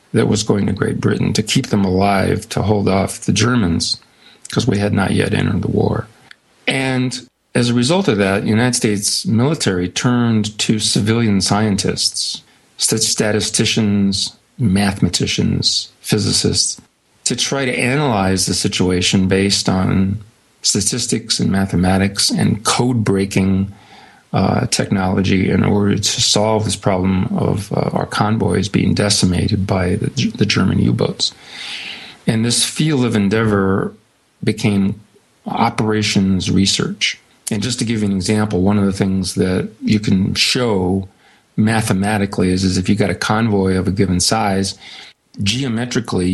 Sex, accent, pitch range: male, American, 95-110 Hz